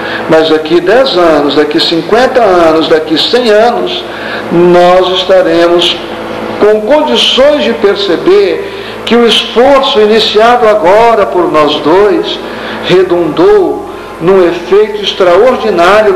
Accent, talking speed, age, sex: Brazilian, 105 wpm, 60-79, male